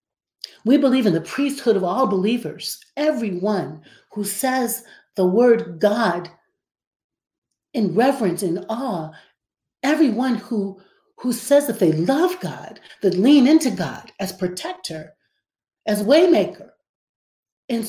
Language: English